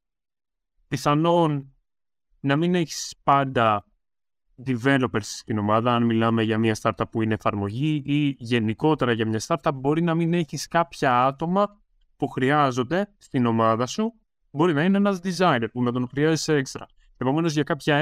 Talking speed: 150 wpm